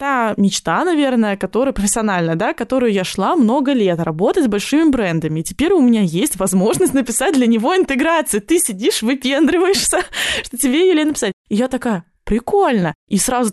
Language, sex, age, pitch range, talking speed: Russian, female, 20-39, 195-255 Hz, 170 wpm